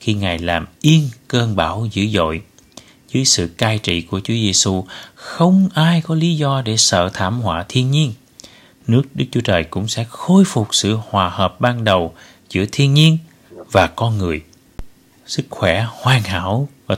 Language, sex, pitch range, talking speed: Vietnamese, male, 95-130 Hz, 175 wpm